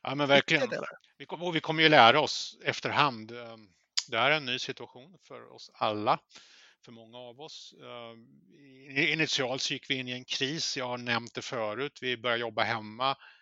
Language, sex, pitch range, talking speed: Swedish, male, 115-145 Hz, 175 wpm